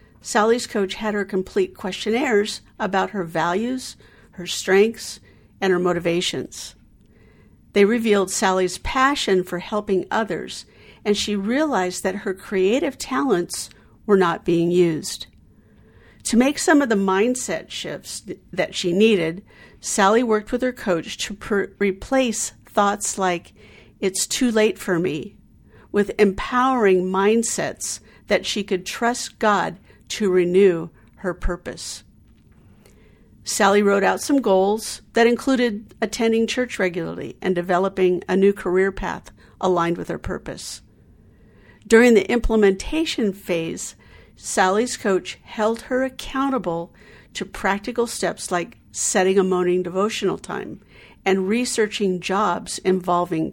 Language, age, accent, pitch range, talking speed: English, 50-69, American, 175-220 Hz, 125 wpm